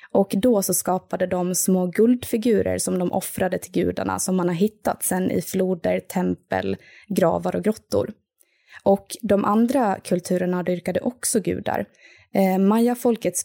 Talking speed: 145 wpm